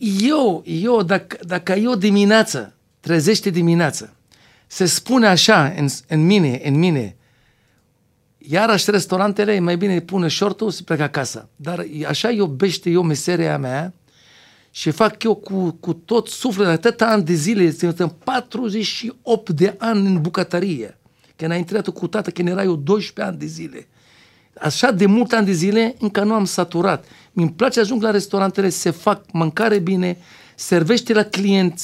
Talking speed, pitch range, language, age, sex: 160 wpm, 175-225 Hz, Romanian, 50-69, male